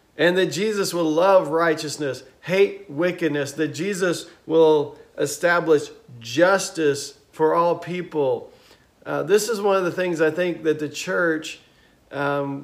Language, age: English, 40-59